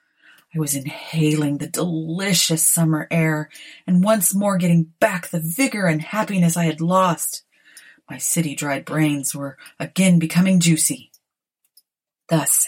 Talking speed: 130 wpm